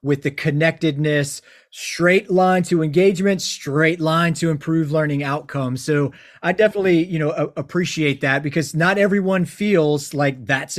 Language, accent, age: English, American, 30-49